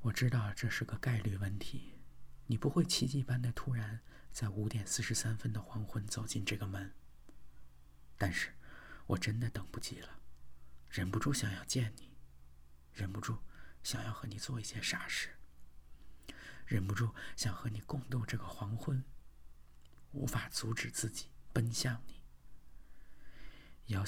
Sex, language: male, Chinese